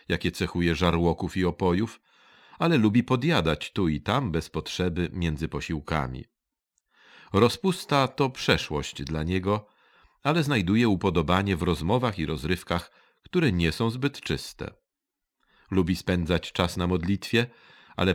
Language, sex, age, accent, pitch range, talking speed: Polish, male, 40-59, native, 80-115 Hz, 125 wpm